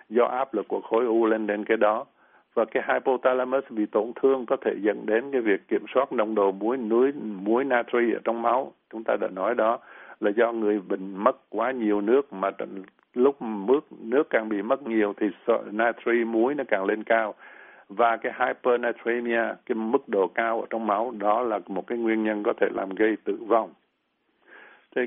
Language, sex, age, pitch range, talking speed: Vietnamese, male, 60-79, 105-125 Hz, 200 wpm